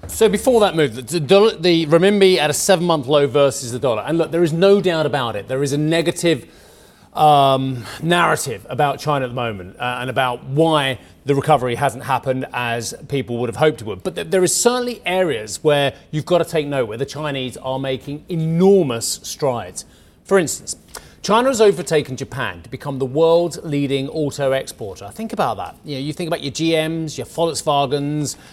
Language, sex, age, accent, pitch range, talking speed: English, male, 30-49, British, 130-165 Hz, 190 wpm